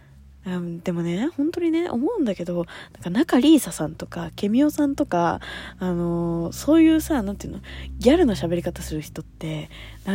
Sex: female